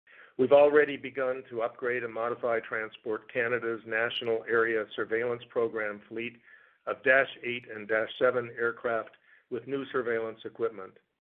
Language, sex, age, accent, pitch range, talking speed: English, male, 50-69, American, 110-135 Hz, 130 wpm